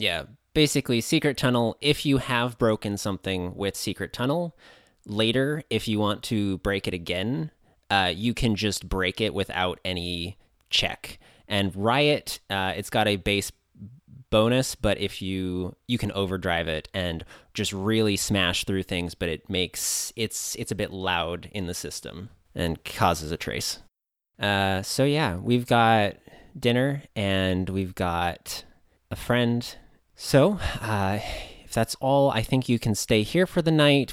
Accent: American